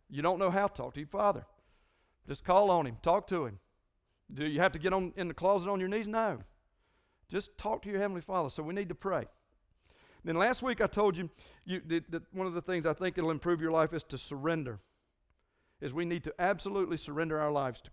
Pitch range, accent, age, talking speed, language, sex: 145-185 Hz, American, 50-69, 240 wpm, English, male